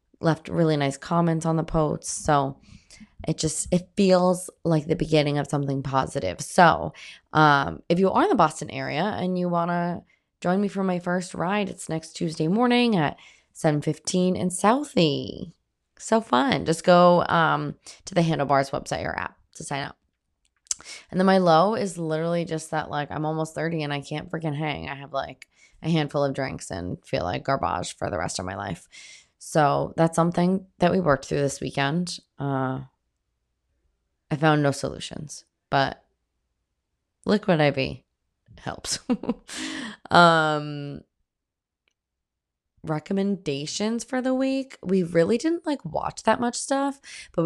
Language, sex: English, female